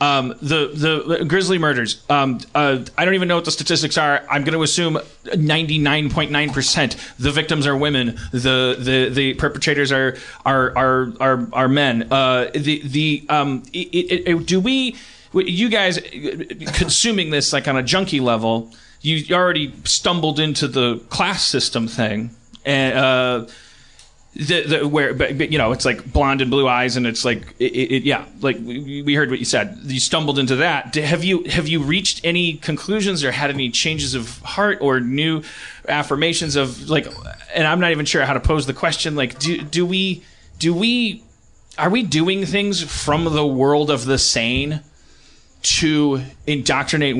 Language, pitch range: English, 130-165 Hz